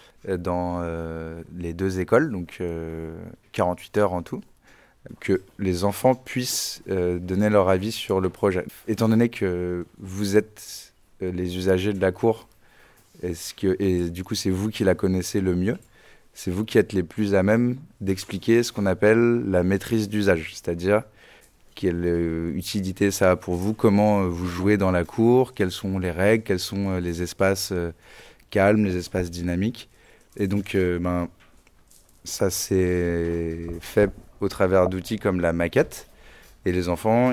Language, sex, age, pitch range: English, male, 20-39, 85-105 Hz